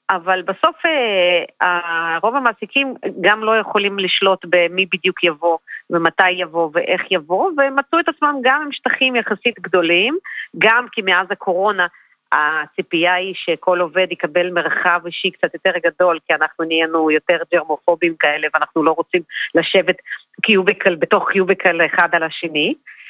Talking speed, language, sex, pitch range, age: 140 wpm, Hebrew, female, 175-255 Hz, 40-59